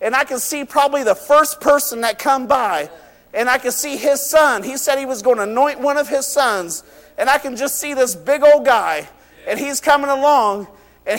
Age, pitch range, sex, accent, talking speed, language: 50-69, 210-270 Hz, male, American, 225 wpm, English